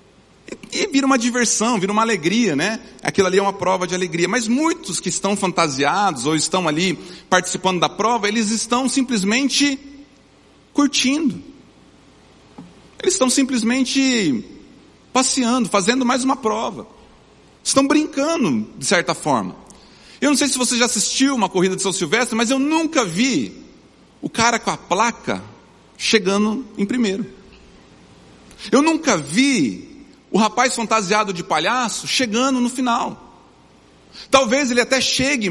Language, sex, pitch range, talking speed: Portuguese, male, 195-260 Hz, 140 wpm